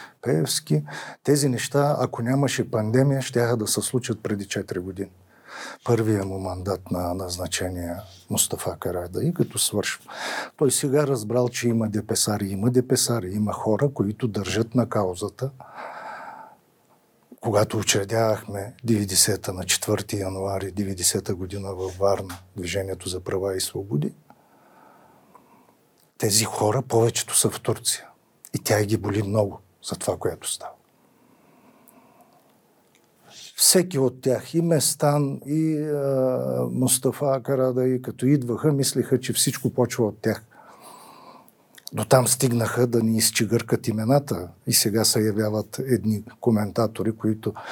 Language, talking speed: Bulgarian, 125 wpm